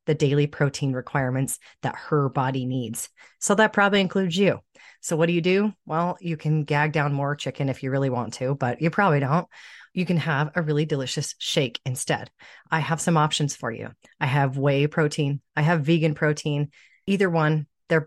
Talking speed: 195 wpm